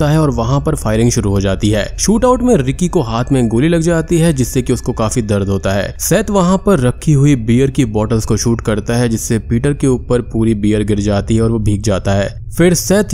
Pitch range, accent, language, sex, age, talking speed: 105-140 Hz, native, Hindi, male, 20-39, 250 wpm